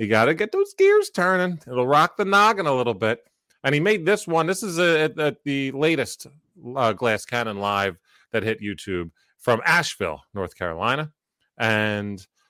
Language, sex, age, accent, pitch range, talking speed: English, male, 30-49, American, 105-165 Hz, 170 wpm